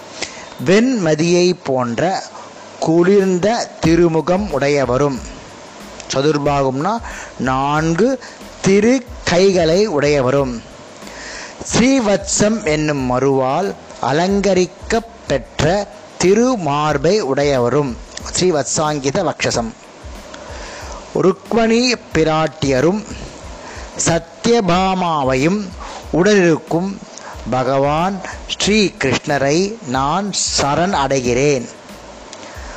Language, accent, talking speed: Tamil, native, 50 wpm